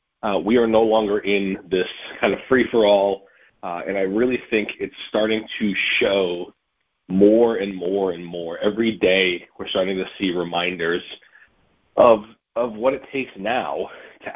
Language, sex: English, male